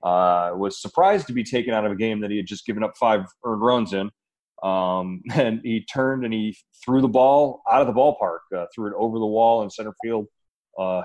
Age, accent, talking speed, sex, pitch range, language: 30-49, American, 235 wpm, male, 95-115 Hz, English